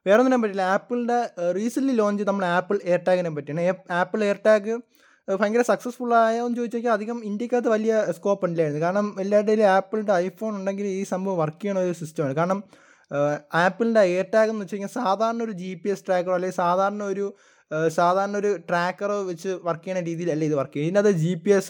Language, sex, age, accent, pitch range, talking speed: Malayalam, male, 20-39, native, 180-225 Hz, 170 wpm